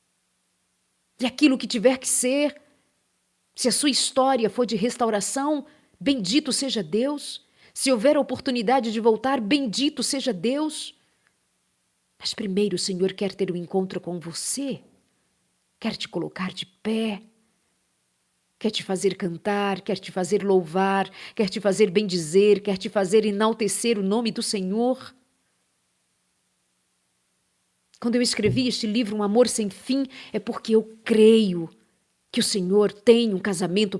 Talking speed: 140 wpm